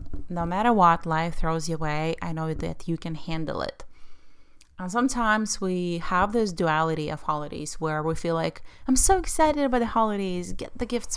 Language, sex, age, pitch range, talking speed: English, female, 30-49, 160-210 Hz, 190 wpm